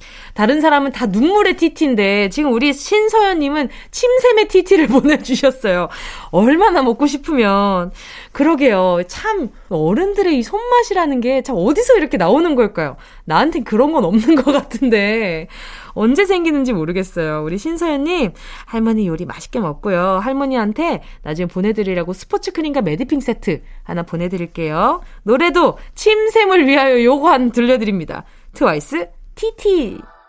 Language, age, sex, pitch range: Korean, 20-39, female, 205-345 Hz